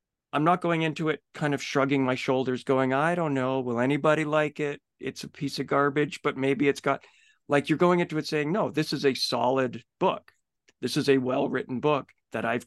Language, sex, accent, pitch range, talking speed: English, male, American, 120-150 Hz, 220 wpm